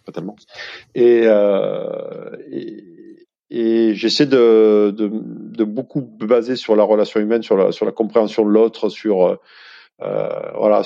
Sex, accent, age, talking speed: male, French, 40-59, 140 wpm